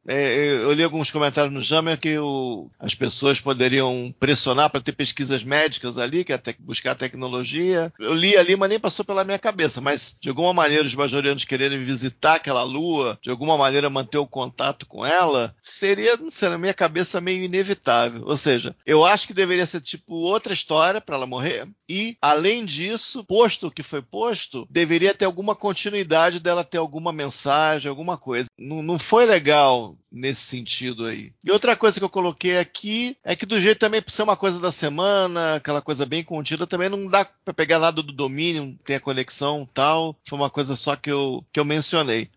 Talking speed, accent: 200 wpm, Brazilian